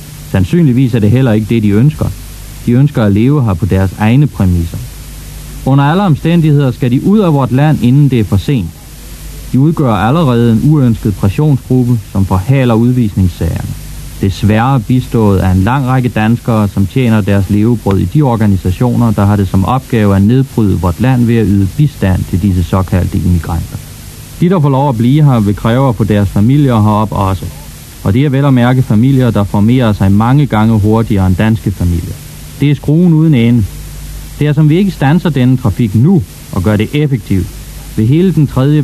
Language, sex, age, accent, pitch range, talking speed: Danish, male, 30-49, native, 100-130 Hz, 190 wpm